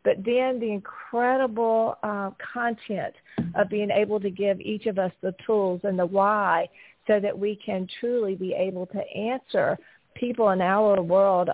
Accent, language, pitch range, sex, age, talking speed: American, English, 185-215 Hz, female, 40-59, 165 wpm